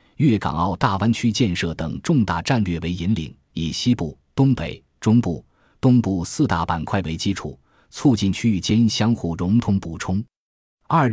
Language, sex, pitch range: Chinese, male, 85-115 Hz